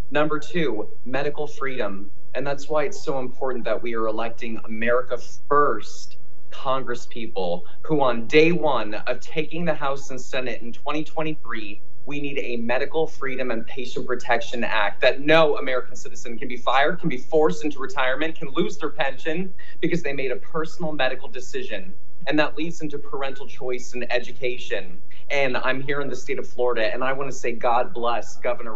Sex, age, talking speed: male, 30-49, 180 wpm